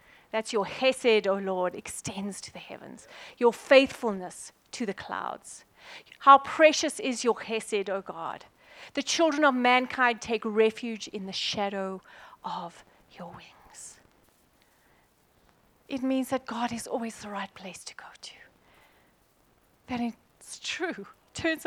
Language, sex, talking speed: English, female, 140 wpm